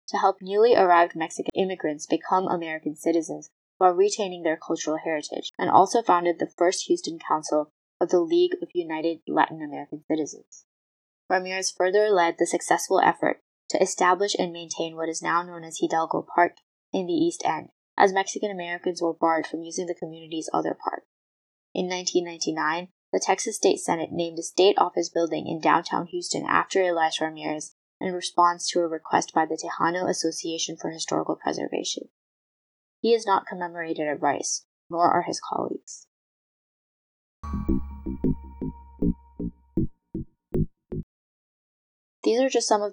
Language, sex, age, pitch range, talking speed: English, female, 10-29, 160-190 Hz, 150 wpm